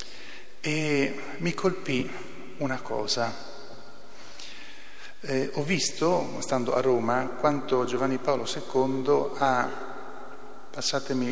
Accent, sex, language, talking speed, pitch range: native, male, Italian, 90 wpm, 120-135 Hz